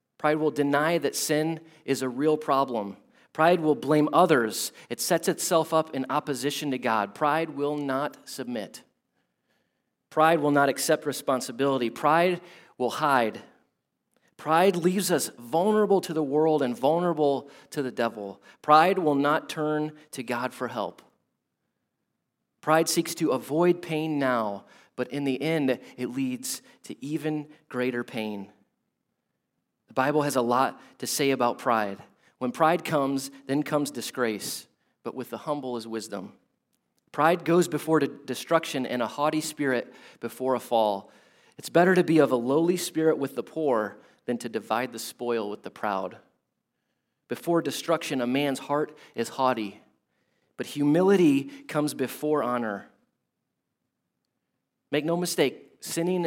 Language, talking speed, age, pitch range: English, 145 wpm, 30-49, 125-160 Hz